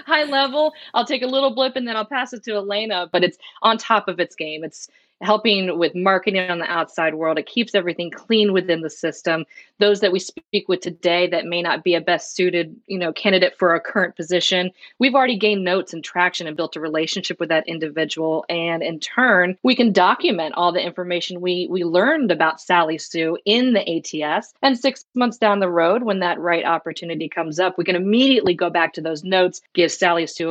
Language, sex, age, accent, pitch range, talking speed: English, female, 30-49, American, 165-205 Hz, 215 wpm